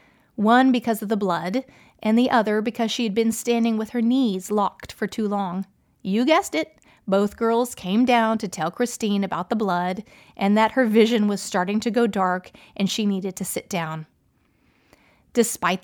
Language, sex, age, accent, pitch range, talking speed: English, female, 30-49, American, 195-235 Hz, 185 wpm